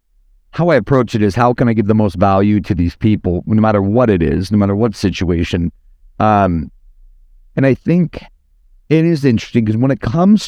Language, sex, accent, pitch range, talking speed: English, male, American, 100-130 Hz, 200 wpm